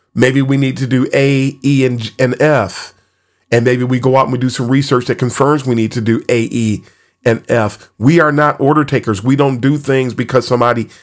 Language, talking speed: English, 225 wpm